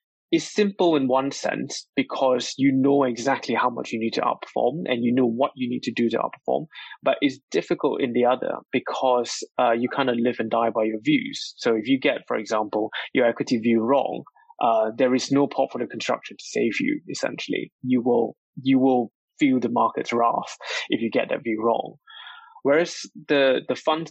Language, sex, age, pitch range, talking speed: English, male, 20-39, 120-155 Hz, 200 wpm